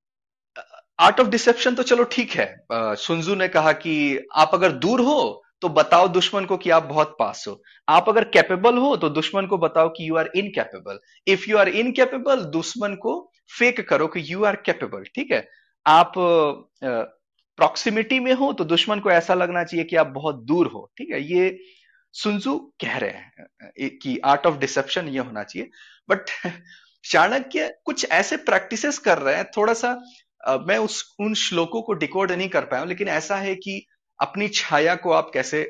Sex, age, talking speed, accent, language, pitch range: male, 30-49, 180 wpm, native, Hindi, 155-240 Hz